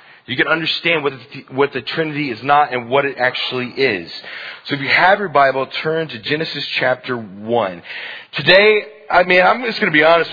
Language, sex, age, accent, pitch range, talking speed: English, male, 30-49, American, 150-220 Hz, 200 wpm